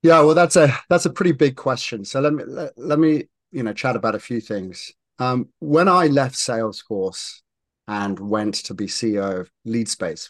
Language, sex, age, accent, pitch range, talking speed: English, male, 30-49, British, 95-125 Hz, 200 wpm